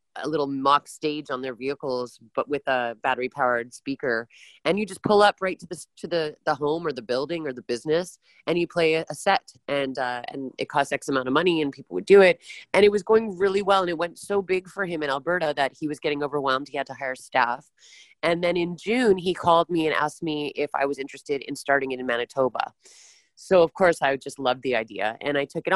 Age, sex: 30-49, female